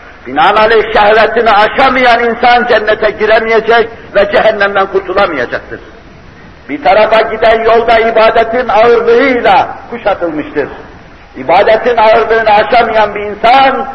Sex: male